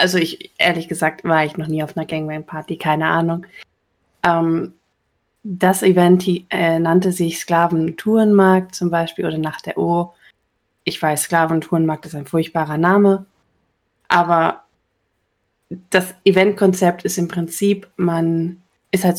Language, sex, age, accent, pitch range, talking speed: German, female, 20-39, German, 165-195 Hz, 135 wpm